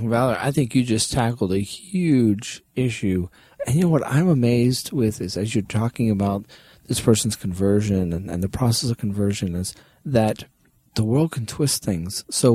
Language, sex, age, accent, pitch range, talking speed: English, male, 30-49, American, 105-140 Hz, 180 wpm